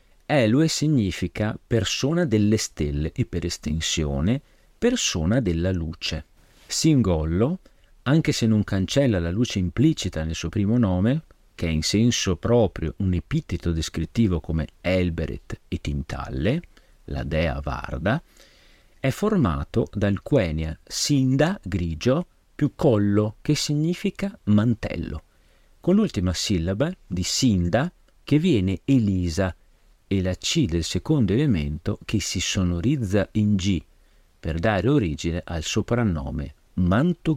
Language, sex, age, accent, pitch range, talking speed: Italian, male, 40-59, native, 85-125 Hz, 120 wpm